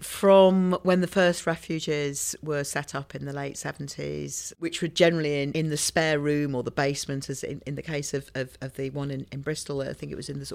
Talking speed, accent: 235 wpm, British